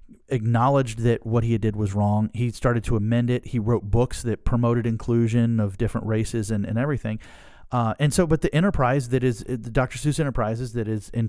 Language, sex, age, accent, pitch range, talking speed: English, male, 40-59, American, 110-140 Hz, 205 wpm